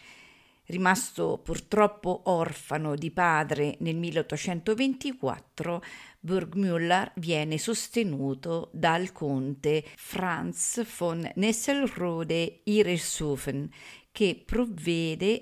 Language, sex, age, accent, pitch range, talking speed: Italian, female, 50-69, native, 155-210 Hz, 65 wpm